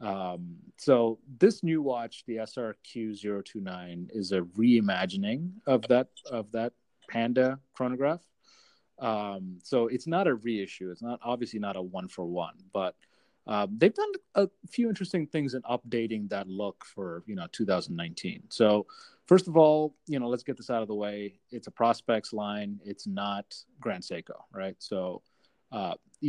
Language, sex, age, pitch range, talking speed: English, male, 30-49, 100-140 Hz, 160 wpm